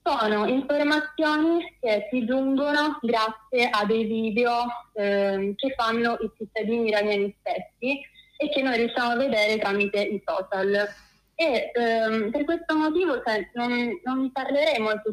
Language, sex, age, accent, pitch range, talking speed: Italian, female, 20-39, native, 210-250 Hz, 140 wpm